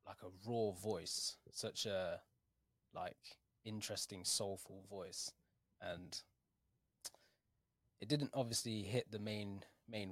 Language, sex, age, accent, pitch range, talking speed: English, male, 20-39, British, 95-115 Hz, 105 wpm